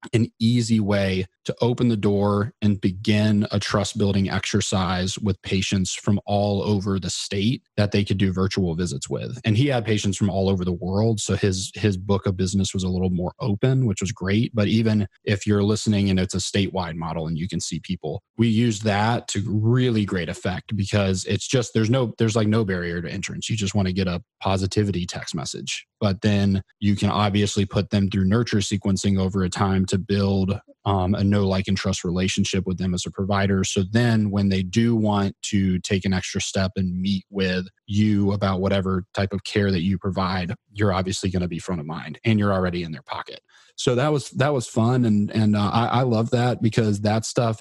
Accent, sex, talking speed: American, male, 215 wpm